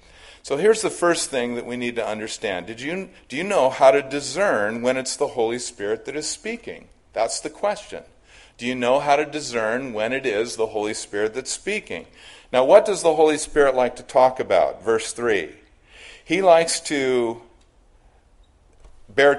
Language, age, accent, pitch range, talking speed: English, 50-69, American, 115-150 Hz, 175 wpm